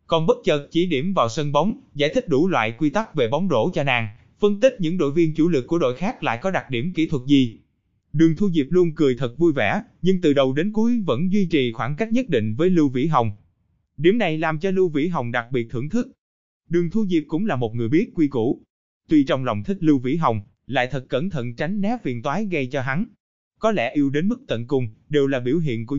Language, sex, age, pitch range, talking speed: Vietnamese, male, 20-39, 130-185 Hz, 255 wpm